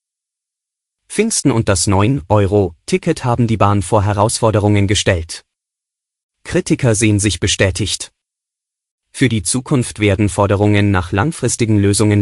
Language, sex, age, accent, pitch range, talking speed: German, male, 30-49, German, 100-120 Hz, 110 wpm